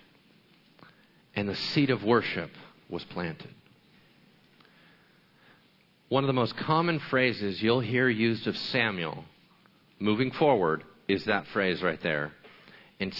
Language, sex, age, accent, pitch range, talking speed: English, male, 50-69, American, 100-145 Hz, 120 wpm